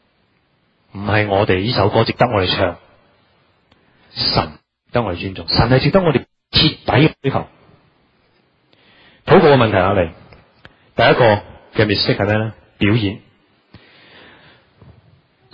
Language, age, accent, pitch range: Chinese, 30-49, native, 100-130 Hz